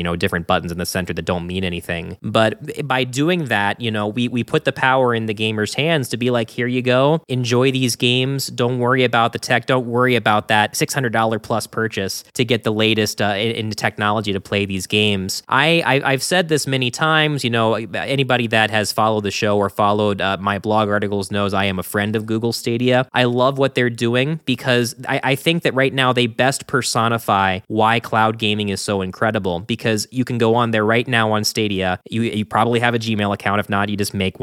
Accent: American